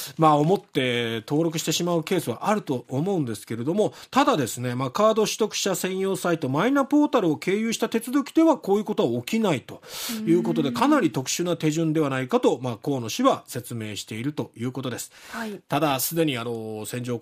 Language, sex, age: Japanese, male, 40-59